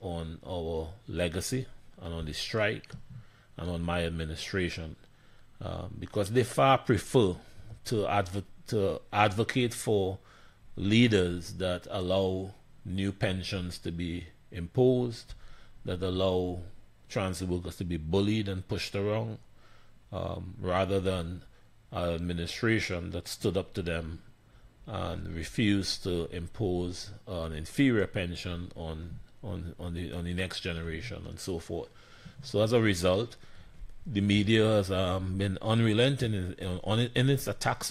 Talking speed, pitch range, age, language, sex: 130 wpm, 90-110 Hz, 30-49, English, male